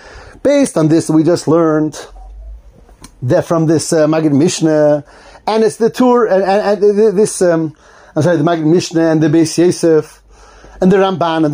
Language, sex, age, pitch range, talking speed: English, male, 30-49, 160-210 Hz, 180 wpm